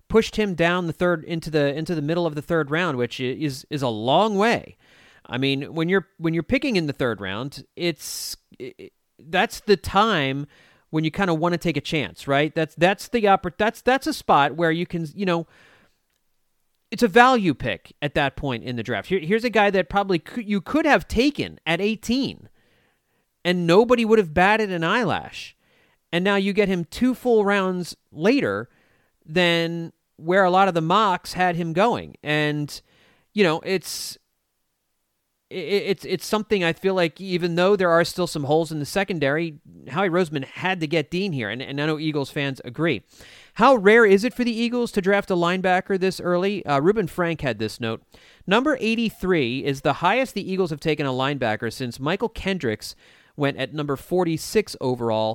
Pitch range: 150-200 Hz